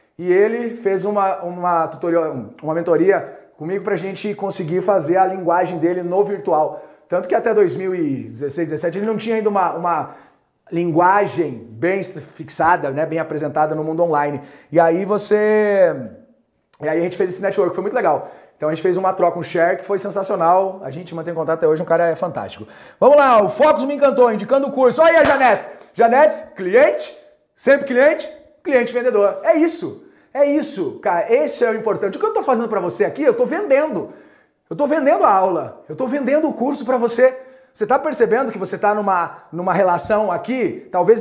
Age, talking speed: 40-59, 195 wpm